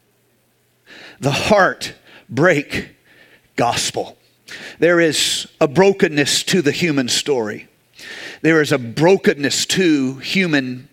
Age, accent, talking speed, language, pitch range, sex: 50-69, American, 100 wpm, English, 155-190 Hz, male